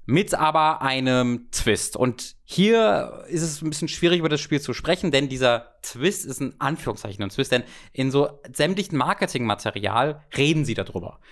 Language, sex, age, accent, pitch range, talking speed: German, male, 20-39, German, 115-155 Hz, 170 wpm